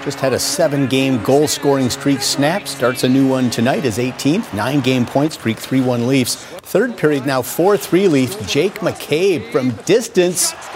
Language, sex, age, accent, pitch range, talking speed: English, male, 50-69, American, 125-165 Hz, 155 wpm